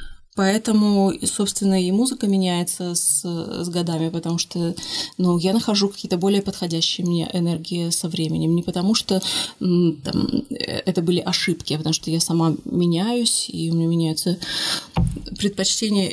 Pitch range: 180-215 Hz